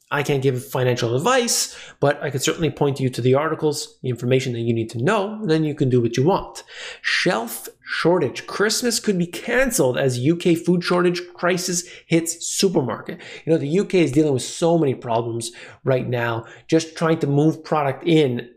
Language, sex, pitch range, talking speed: English, male, 125-170 Hz, 190 wpm